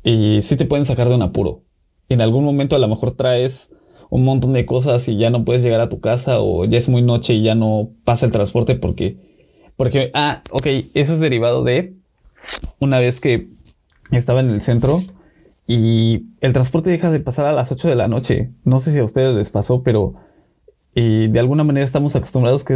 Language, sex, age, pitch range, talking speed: Spanish, male, 20-39, 115-140 Hz, 210 wpm